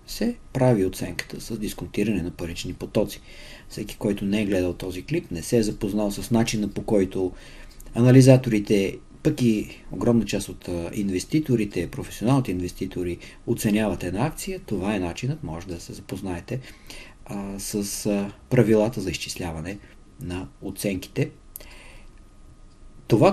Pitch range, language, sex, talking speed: 100-135 Hz, Bulgarian, male, 125 wpm